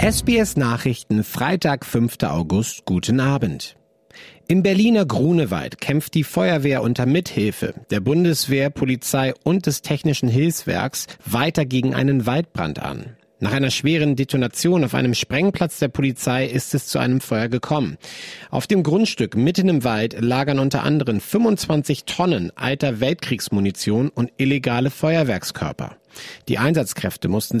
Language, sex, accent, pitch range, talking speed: German, male, German, 120-155 Hz, 135 wpm